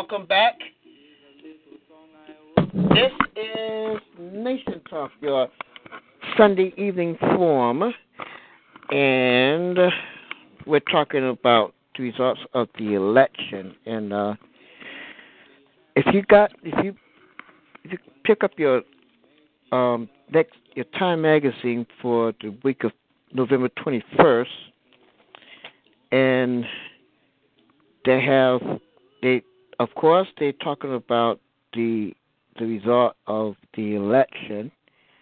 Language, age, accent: English, 60-79, American